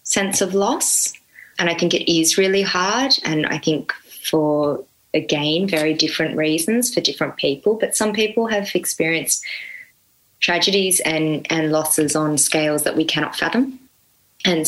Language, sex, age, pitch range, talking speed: English, female, 20-39, 150-190 Hz, 150 wpm